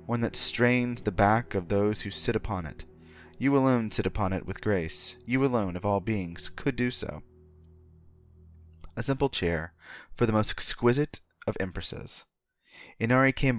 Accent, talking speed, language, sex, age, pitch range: American, 165 wpm, English, male, 20-39, 80-120 Hz